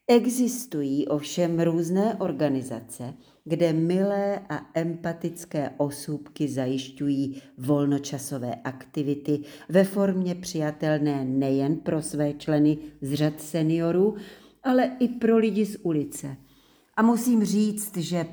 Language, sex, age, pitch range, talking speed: English, female, 50-69, 145-180 Hz, 105 wpm